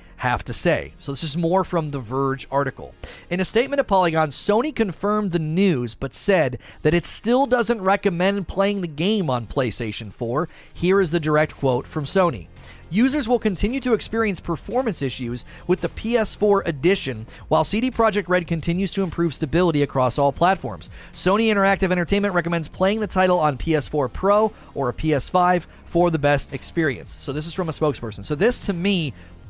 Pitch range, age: 140-195 Hz, 30-49